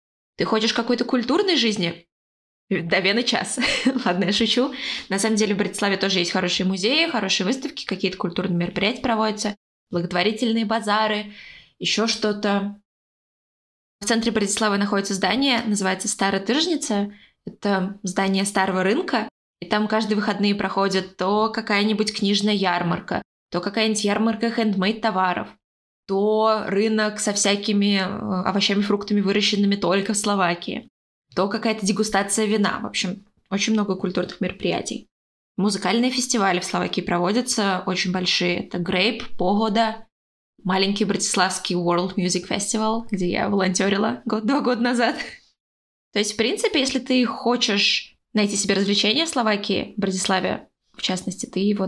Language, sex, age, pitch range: Russian, female, 20-39, 190-225 Hz